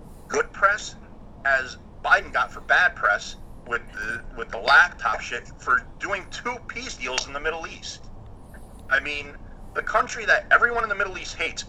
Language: English